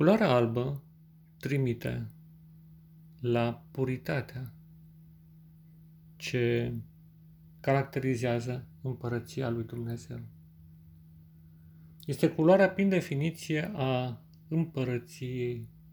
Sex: male